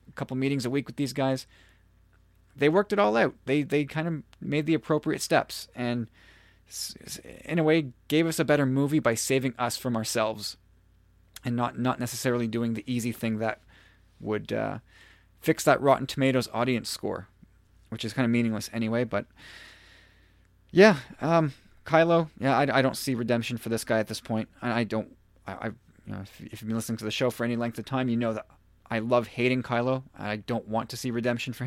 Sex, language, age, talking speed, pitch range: male, English, 20-39, 200 wpm, 100-140 Hz